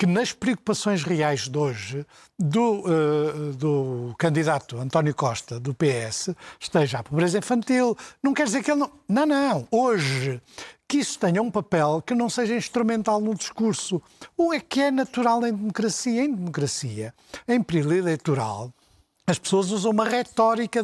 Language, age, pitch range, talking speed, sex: Portuguese, 60-79, 150-230 Hz, 160 wpm, male